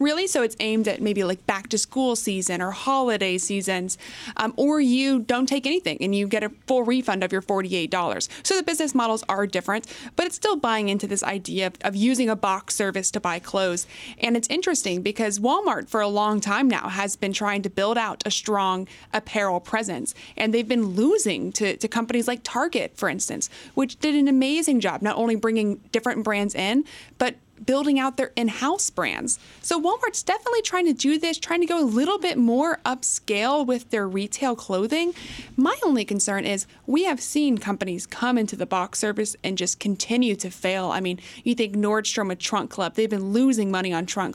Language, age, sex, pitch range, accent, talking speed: English, 30-49, female, 195-260 Hz, American, 200 wpm